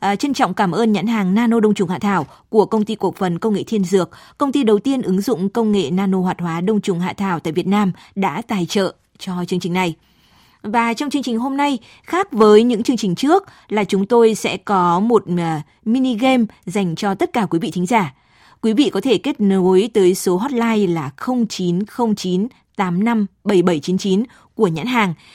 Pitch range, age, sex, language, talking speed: 185-230 Hz, 20-39, female, Vietnamese, 210 wpm